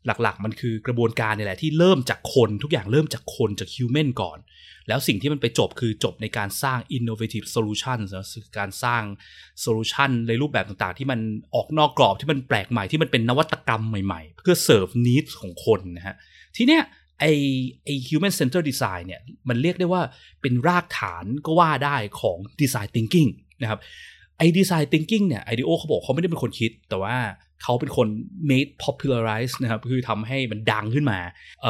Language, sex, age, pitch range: Thai, male, 20-39, 110-150 Hz